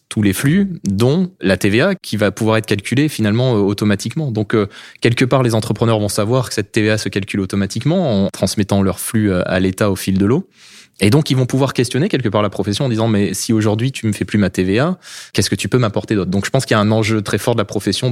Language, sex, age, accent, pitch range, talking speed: French, male, 20-39, French, 100-120 Hz, 260 wpm